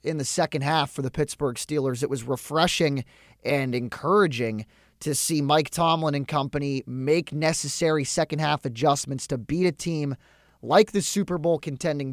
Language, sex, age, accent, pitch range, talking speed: English, male, 20-39, American, 135-190 Hz, 155 wpm